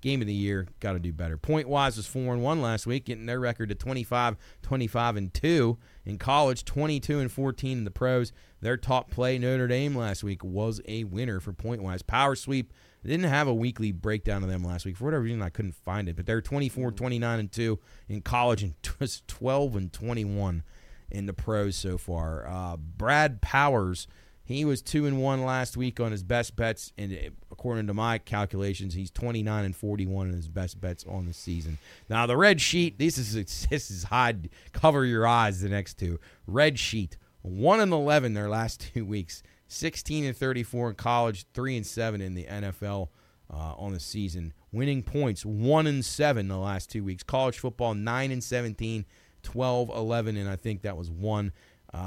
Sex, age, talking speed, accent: male, 30-49, 205 wpm, American